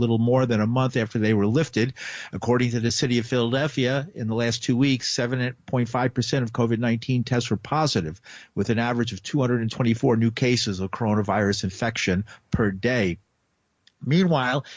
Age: 50-69